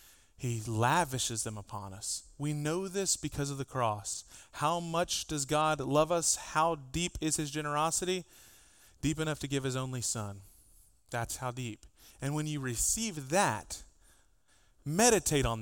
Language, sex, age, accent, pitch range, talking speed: English, male, 30-49, American, 115-160 Hz, 155 wpm